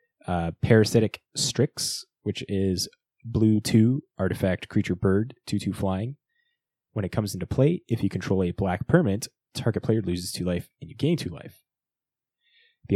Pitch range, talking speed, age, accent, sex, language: 95-130 Hz, 160 wpm, 10-29, American, male, English